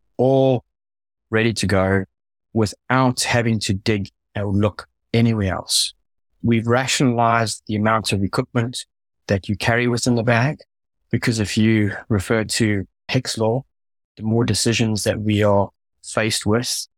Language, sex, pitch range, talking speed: English, male, 95-115 Hz, 140 wpm